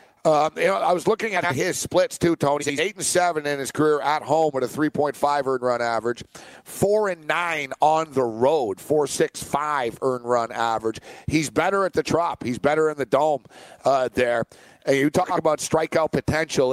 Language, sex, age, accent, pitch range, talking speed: English, male, 50-69, American, 130-155 Hz, 195 wpm